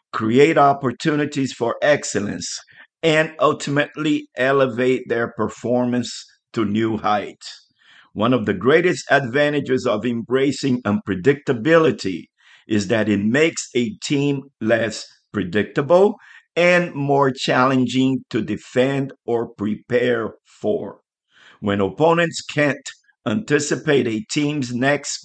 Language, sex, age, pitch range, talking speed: English, male, 50-69, 115-145 Hz, 100 wpm